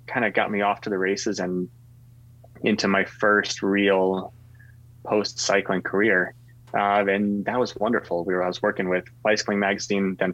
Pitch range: 95-120 Hz